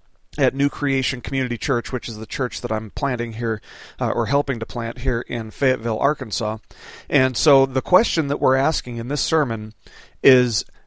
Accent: American